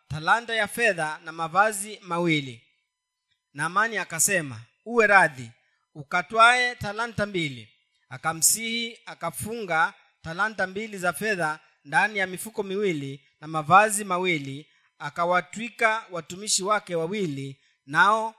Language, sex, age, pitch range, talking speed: Swahili, male, 30-49, 155-215 Hz, 100 wpm